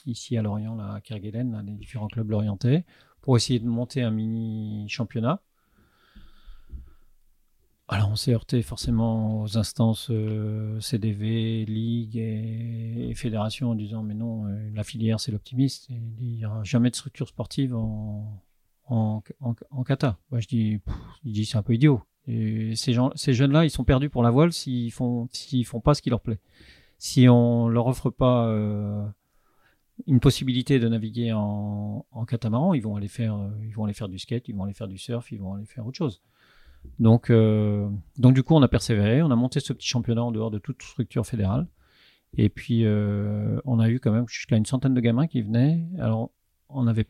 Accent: French